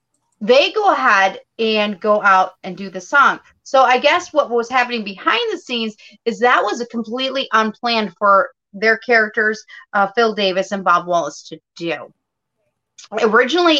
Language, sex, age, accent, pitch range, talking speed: English, female, 30-49, American, 195-240 Hz, 160 wpm